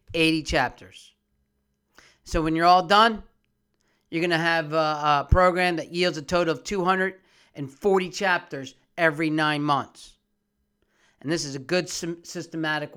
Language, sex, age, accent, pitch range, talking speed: English, male, 40-59, American, 150-190 Hz, 140 wpm